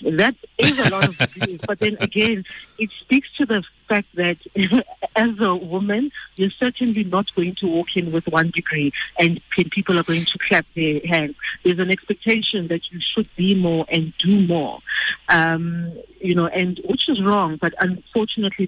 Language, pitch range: English, 175-220 Hz